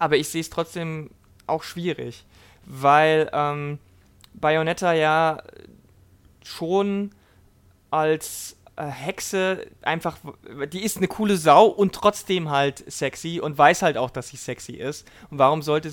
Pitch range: 130-165 Hz